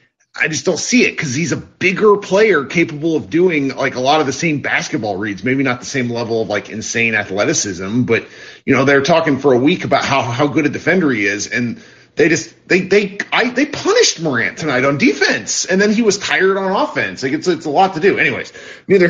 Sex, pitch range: male, 115-175 Hz